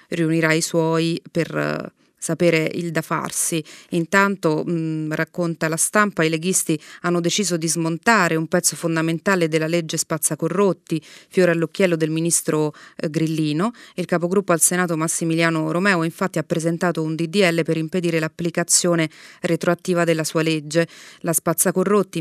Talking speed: 130 wpm